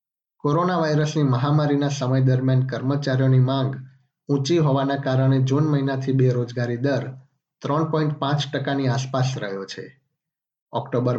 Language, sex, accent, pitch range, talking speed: Gujarati, male, native, 125-145 Hz, 105 wpm